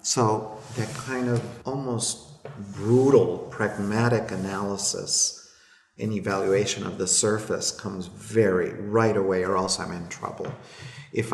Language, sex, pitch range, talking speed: English, male, 100-115 Hz, 120 wpm